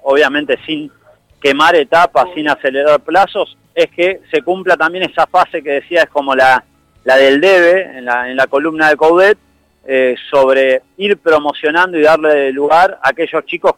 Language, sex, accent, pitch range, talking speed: Spanish, male, Argentinian, 135-175 Hz, 170 wpm